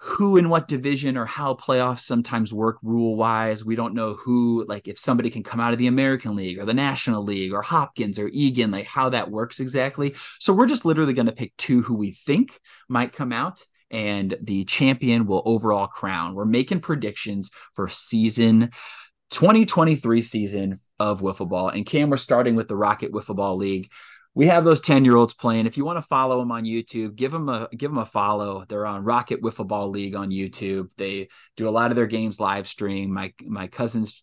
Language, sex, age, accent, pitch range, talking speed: English, male, 30-49, American, 100-125 Hz, 200 wpm